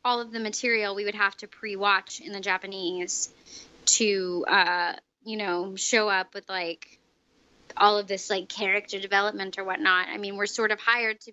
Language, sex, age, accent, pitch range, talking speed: English, female, 20-39, American, 205-250 Hz, 185 wpm